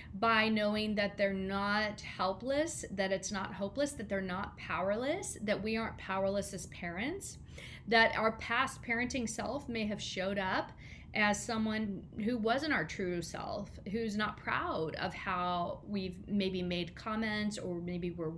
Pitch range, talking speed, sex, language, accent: 185-220 Hz, 155 wpm, female, English, American